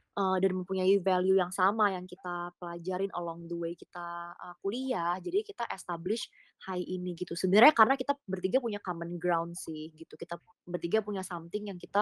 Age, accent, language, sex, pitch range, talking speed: 20-39, native, Indonesian, female, 180-215 Hz, 180 wpm